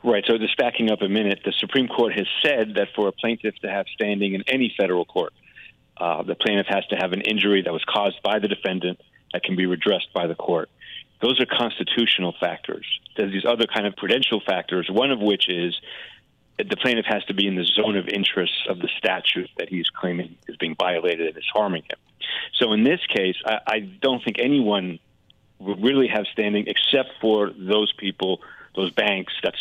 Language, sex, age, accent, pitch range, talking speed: English, male, 40-59, American, 95-115 Hz, 210 wpm